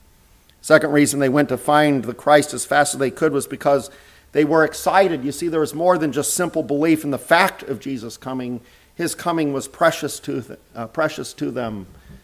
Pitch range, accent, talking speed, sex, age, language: 125-150 Hz, American, 190 wpm, male, 50-69, English